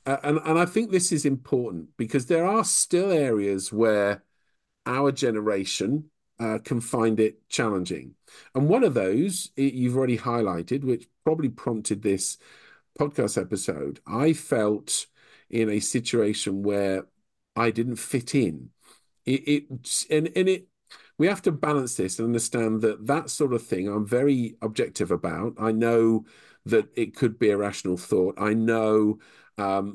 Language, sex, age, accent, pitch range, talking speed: English, male, 50-69, British, 105-140 Hz, 155 wpm